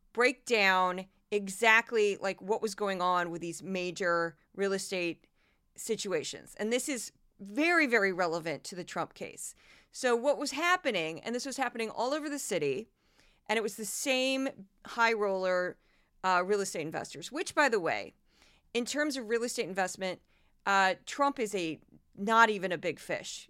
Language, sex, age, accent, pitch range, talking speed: English, female, 30-49, American, 195-255 Hz, 170 wpm